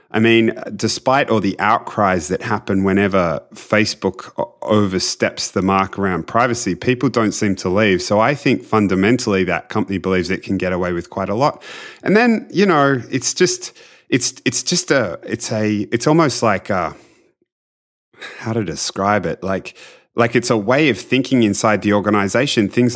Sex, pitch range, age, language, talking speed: male, 100-120 Hz, 30-49, English, 170 wpm